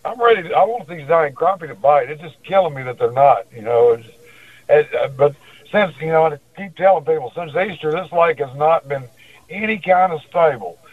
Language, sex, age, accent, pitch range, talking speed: English, male, 60-79, American, 140-175 Hz, 225 wpm